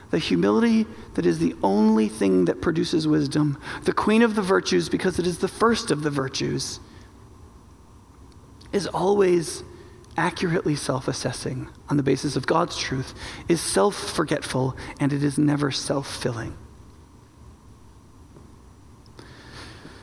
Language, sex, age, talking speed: English, male, 40-59, 130 wpm